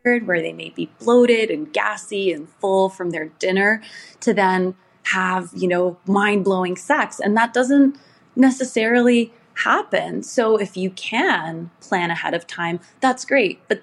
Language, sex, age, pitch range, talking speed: English, female, 20-39, 180-230 Hz, 150 wpm